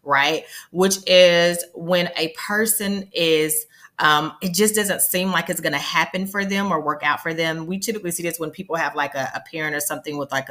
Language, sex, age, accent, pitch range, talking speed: English, female, 30-49, American, 155-200 Hz, 225 wpm